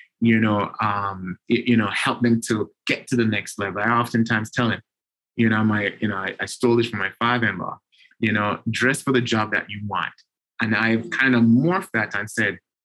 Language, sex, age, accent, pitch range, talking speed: English, male, 30-49, American, 110-130 Hz, 230 wpm